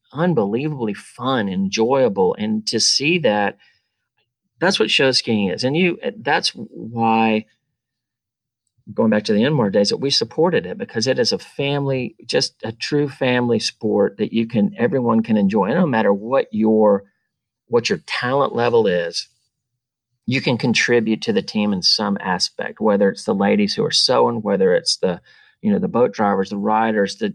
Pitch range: 105-140 Hz